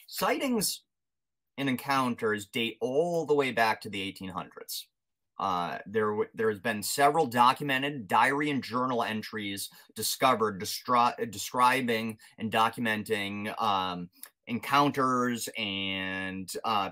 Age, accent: 30-49, American